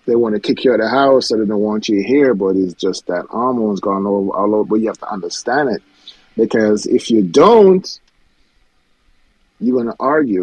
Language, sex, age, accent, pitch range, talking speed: English, male, 30-49, American, 110-155 Hz, 215 wpm